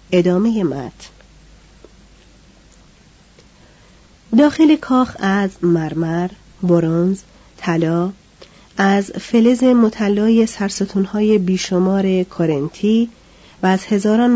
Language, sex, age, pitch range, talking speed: Persian, female, 40-59, 175-215 Hz, 70 wpm